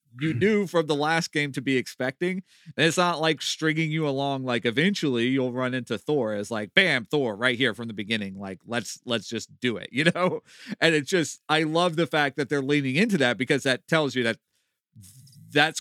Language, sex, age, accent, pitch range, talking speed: English, male, 40-59, American, 110-150 Hz, 215 wpm